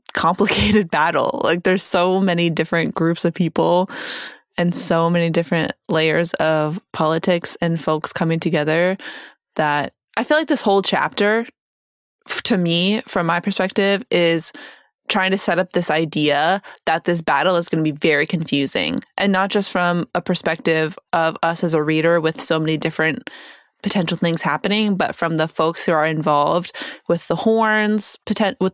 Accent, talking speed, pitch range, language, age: American, 165 wpm, 165-195 Hz, English, 20-39